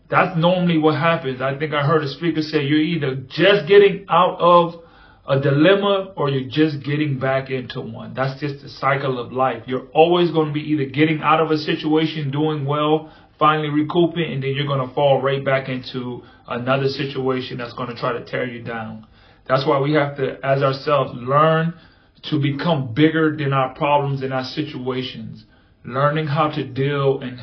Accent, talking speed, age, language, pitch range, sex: American, 190 wpm, 30-49, English, 130-155 Hz, male